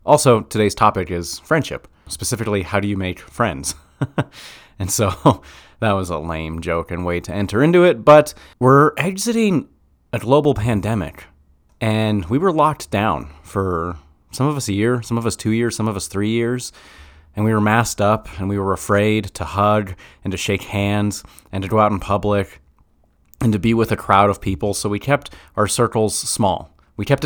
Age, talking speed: 30-49, 195 wpm